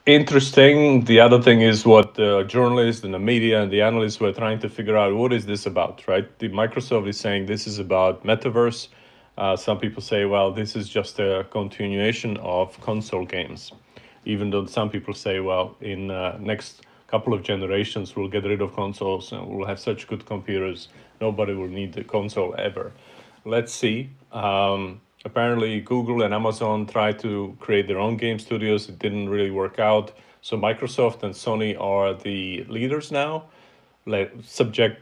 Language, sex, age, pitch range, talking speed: English, male, 40-59, 100-115 Hz, 175 wpm